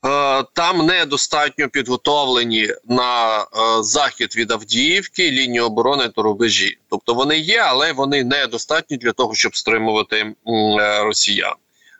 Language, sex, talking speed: Ukrainian, male, 110 wpm